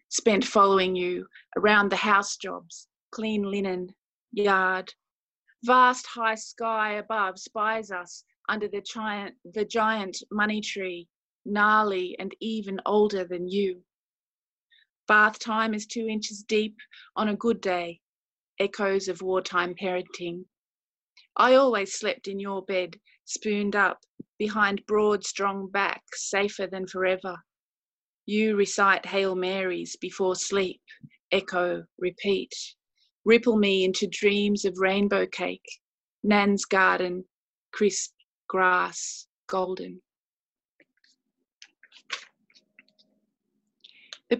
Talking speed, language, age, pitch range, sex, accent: 105 wpm, English, 30-49, 190-215 Hz, female, Australian